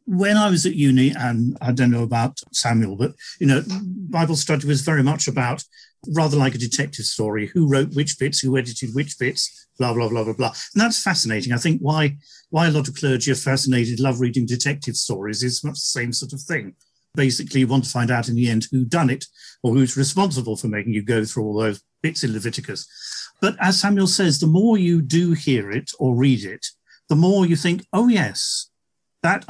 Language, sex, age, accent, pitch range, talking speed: English, male, 50-69, British, 120-160 Hz, 220 wpm